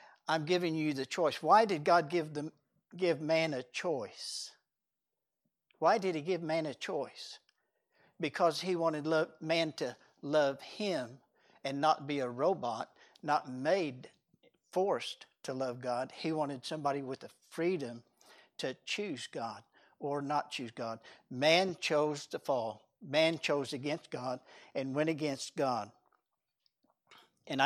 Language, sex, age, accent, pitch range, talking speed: English, male, 60-79, American, 140-170 Hz, 135 wpm